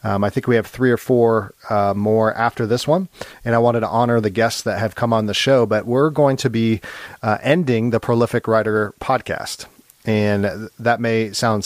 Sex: male